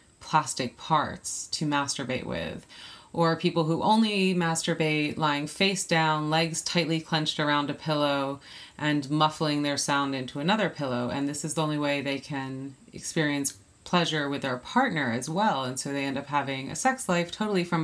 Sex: female